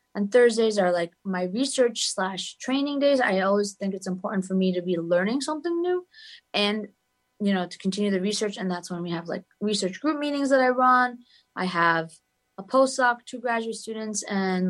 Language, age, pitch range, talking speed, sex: English, 20-39, 185-245 Hz, 195 wpm, female